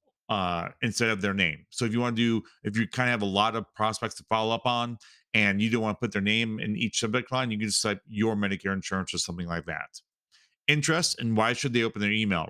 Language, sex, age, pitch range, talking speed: English, male, 40-59, 105-125 Hz, 265 wpm